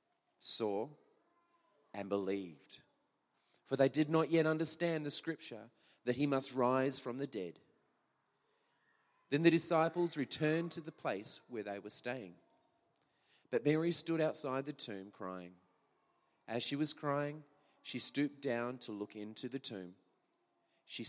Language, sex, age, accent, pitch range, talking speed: English, male, 40-59, Australian, 120-185 Hz, 140 wpm